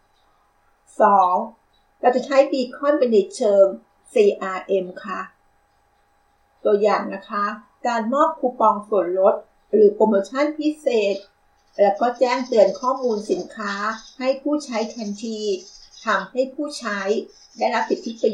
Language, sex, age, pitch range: Thai, female, 60-79, 200-255 Hz